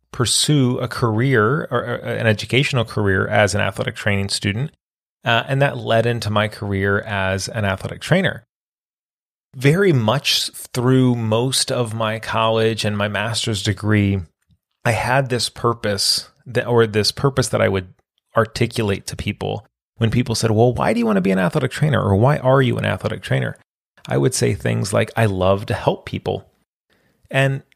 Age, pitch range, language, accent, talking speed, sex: 30-49, 110-135 Hz, English, American, 170 wpm, male